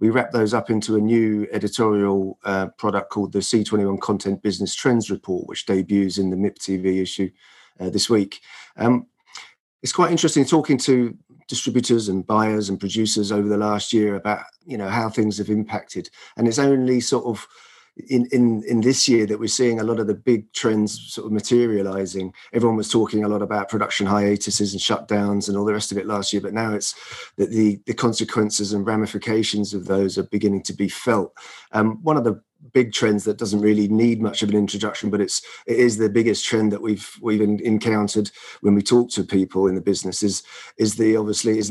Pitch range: 100-115 Hz